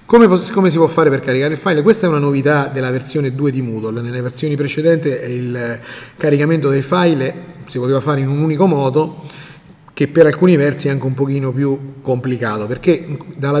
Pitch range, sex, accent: 130-170 Hz, male, native